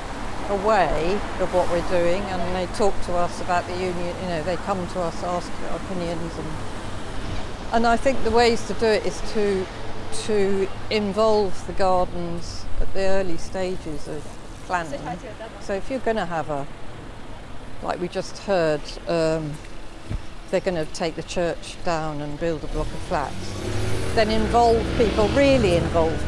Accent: British